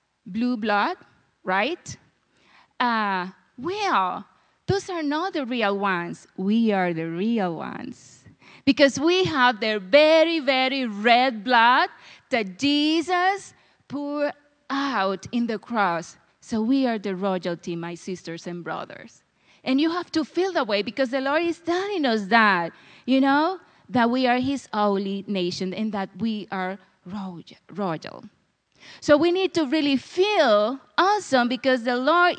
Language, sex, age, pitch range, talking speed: English, female, 30-49, 210-315 Hz, 145 wpm